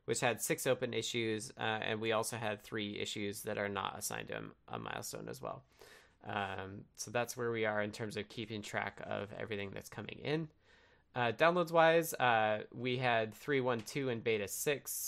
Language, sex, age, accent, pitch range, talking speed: English, male, 20-39, American, 105-125 Hz, 195 wpm